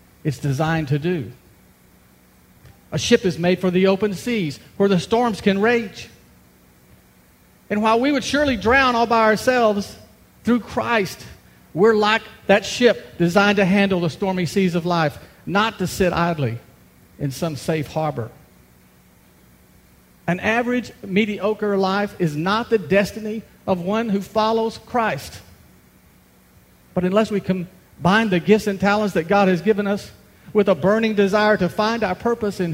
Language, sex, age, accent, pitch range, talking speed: English, male, 50-69, American, 130-210 Hz, 150 wpm